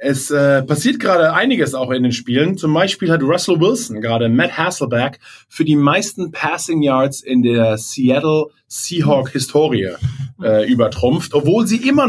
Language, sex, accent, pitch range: German, male, German, 125-160 Hz